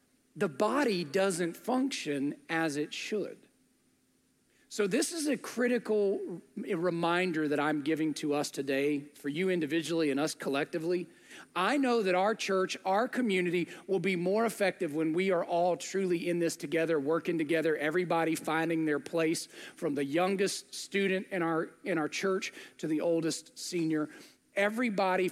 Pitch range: 165-215 Hz